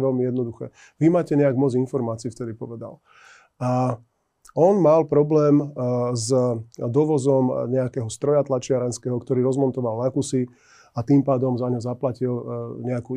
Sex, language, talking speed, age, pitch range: male, Slovak, 130 wpm, 30-49, 125-145 Hz